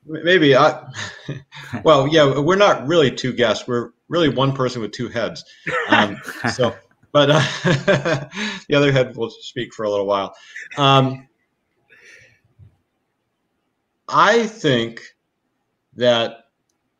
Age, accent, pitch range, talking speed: 40-59, American, 105-140 Hz, 115 wpm